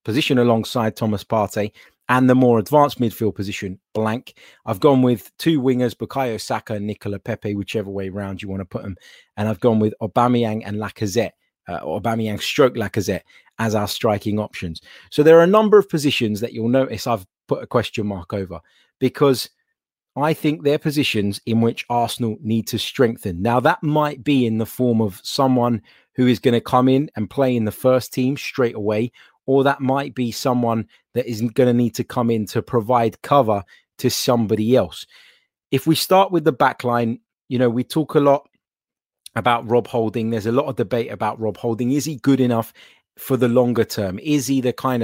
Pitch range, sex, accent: 110-135 Hz, male, British